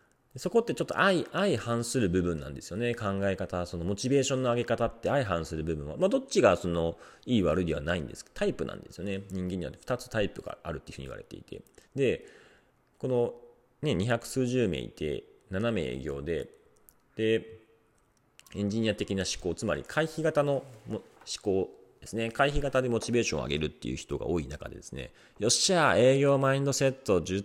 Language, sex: Japanese, male